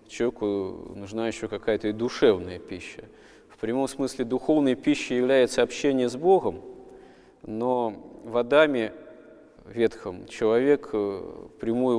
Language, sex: Russian, male